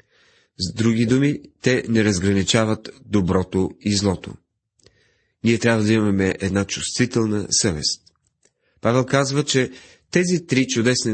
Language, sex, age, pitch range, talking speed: Bulgarian, male, 40-59, 95-125 Hz, 120 wpm